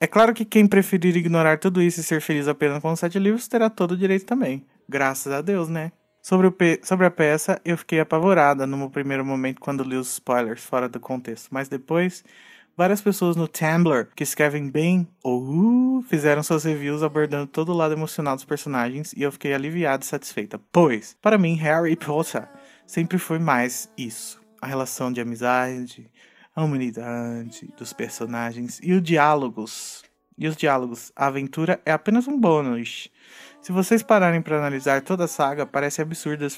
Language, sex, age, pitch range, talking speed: Portuguese, male, 20-39, 135-175 Hz, 185 wpm